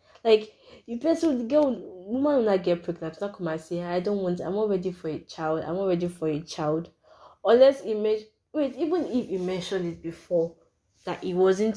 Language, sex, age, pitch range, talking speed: English, female, 20-39, 170-215 Hz, 220 wpm